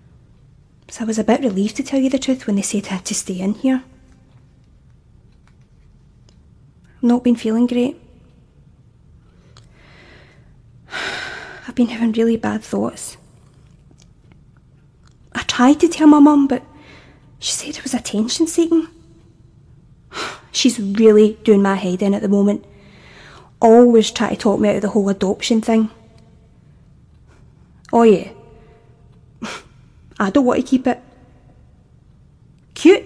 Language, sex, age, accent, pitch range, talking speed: English, female, 20-39, British, 215-260 Hz, 130 wpm